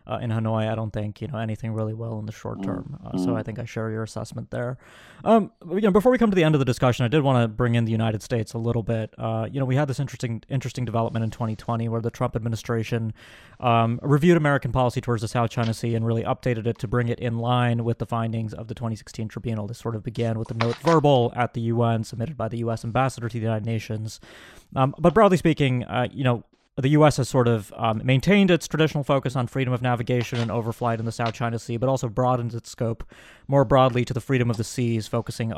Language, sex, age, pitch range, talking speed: English, male, 30-49, 115-125 Hz, 255 wpm